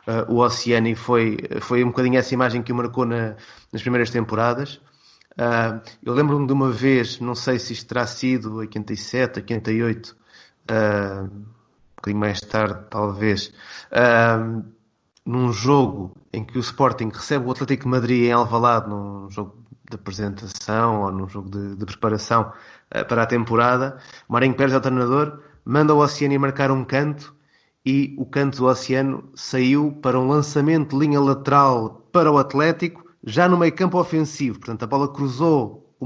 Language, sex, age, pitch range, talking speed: Portuguese, male, 20-39, 115-140 Hz, 165 wpm